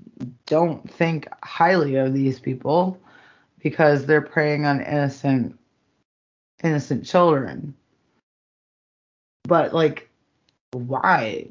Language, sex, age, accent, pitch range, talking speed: English, female, 30-49, American, 135-160 Hz, 85 wpm